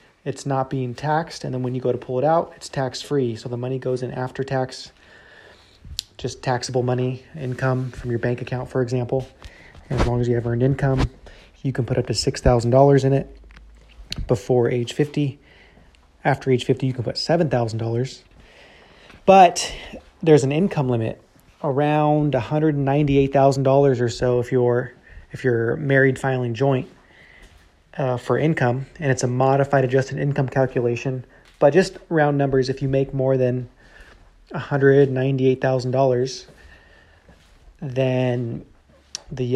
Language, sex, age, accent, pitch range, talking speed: English, male, 30-49, American, 120-135 Hz, 145 wpm